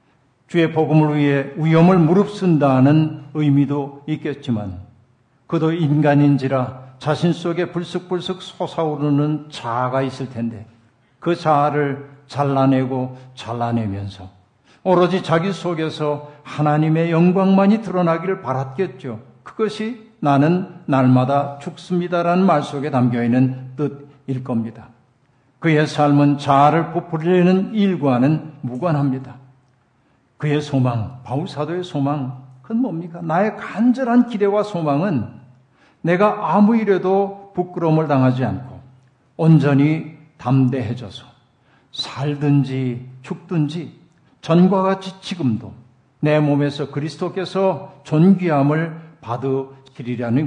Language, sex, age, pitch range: Korean, male, 50-69, 130-170 Hz